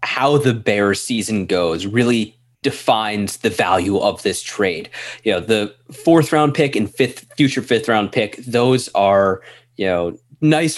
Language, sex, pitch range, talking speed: English, male, 105-135 Hz, 160 wpm